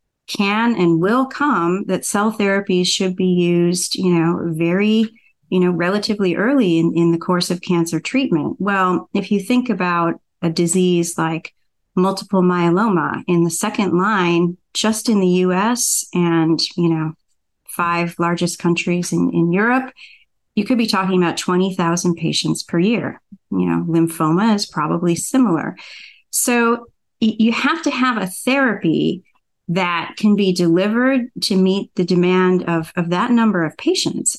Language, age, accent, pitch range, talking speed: English, 30-49, American, 170-220 Hz, 150 wpm